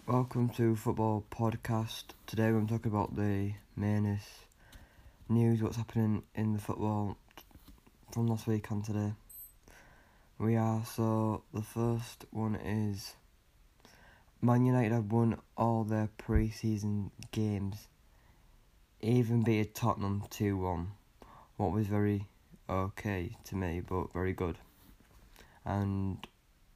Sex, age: male, 20-39